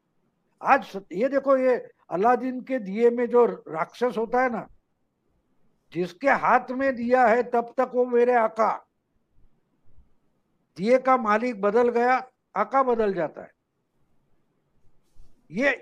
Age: 60-79